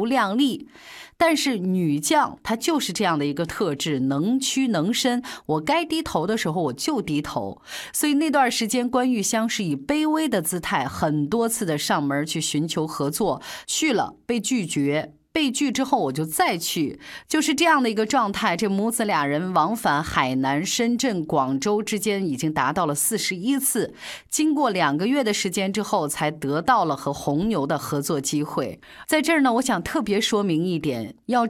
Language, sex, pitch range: Chinese, female, 160-255 Hz